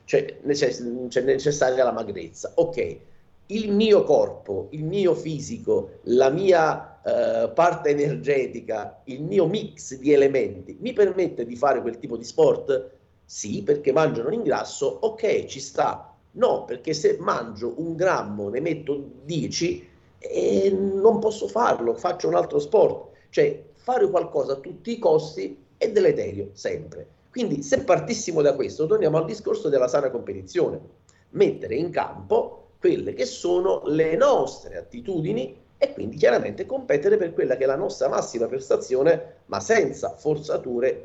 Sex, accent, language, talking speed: male, native, Italian, 145 wpm